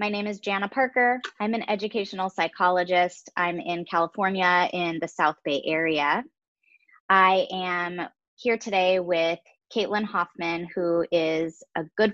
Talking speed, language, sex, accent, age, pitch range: 140 wpm, English, female, American, 20-39, 175-210 Hz